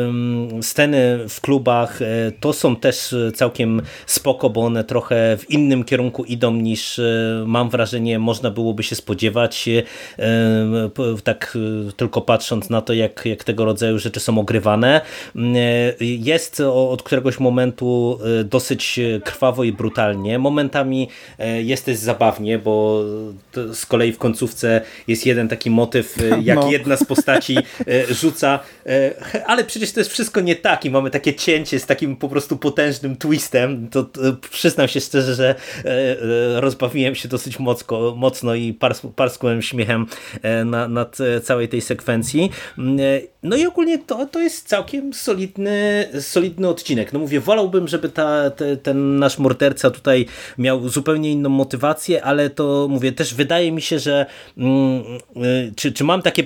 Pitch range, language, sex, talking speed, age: 115-145 Hz, Polish, male, 145 wpm, 30-49